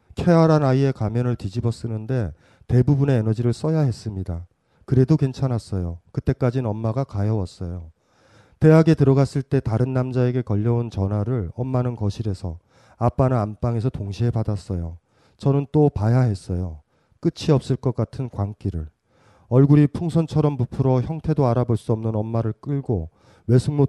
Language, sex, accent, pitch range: Korean, male, native, 105-135 Hz